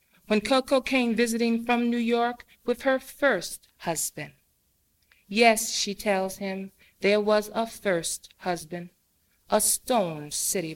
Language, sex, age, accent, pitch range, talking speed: English, female, 40-59, American, 210-275 Hz, 130 wpm